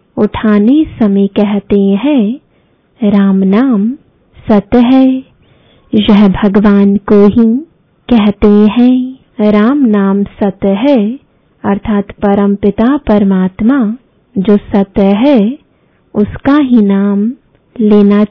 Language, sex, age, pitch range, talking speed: English, female, 20-39, 205-250 Hz, 90 wpm